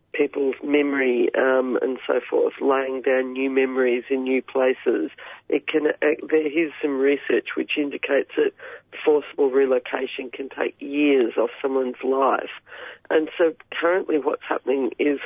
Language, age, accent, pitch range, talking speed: English, 40-59, Australian, 135-180 Hz, 145 wpm